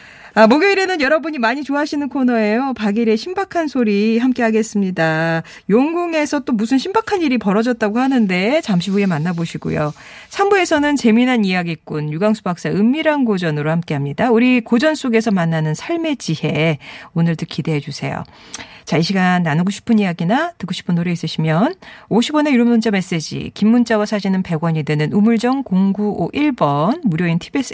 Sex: female